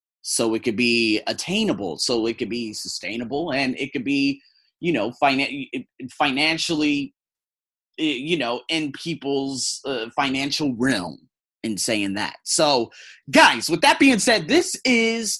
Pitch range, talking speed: 115-165 Hz, 135 wpm